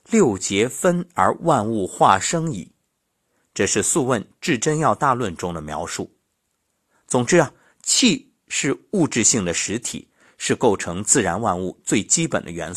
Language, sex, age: Chinese, male, 50-69